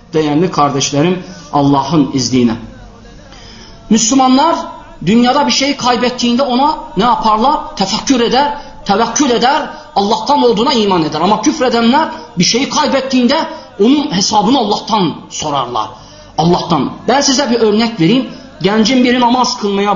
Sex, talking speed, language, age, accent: male, 115 wpm, Turkish, 40-59, native